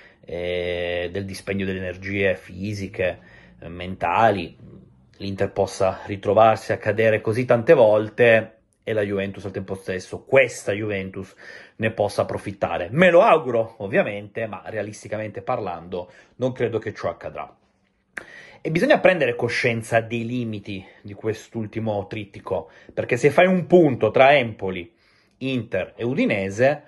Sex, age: male, 30-49